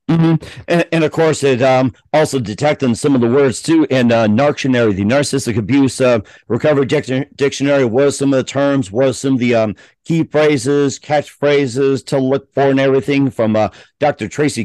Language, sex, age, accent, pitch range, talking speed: English, male, 50-69, American, 120-150 Hz, 180 wpm